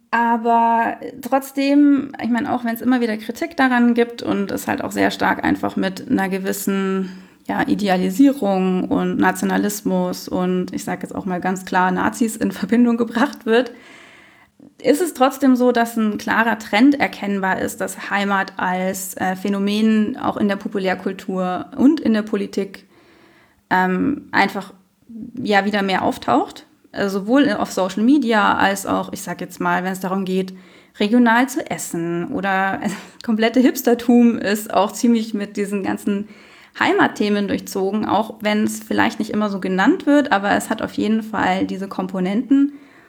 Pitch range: 195-250 Hz